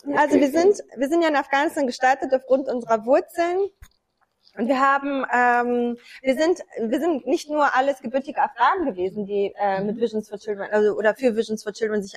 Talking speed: 190 wpm